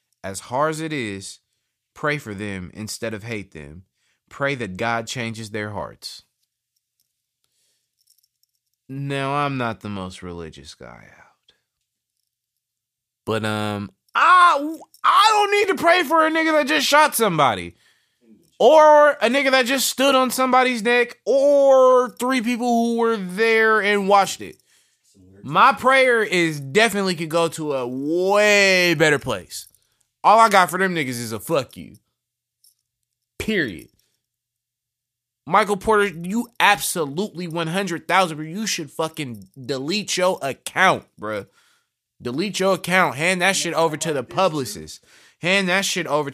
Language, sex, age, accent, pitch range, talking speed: English, male, 30-49, American, 120-200 Hz, 140 wpm